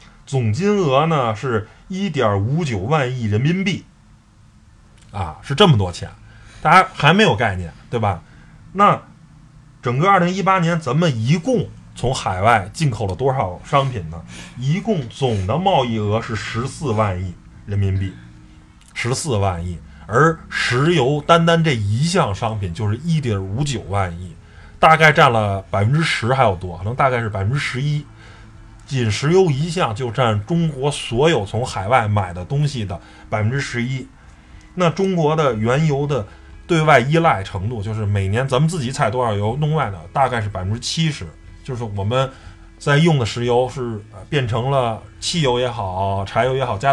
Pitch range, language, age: 105-150 Hz, Chinese, 20-39